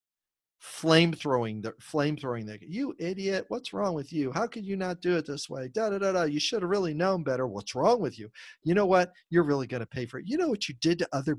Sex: male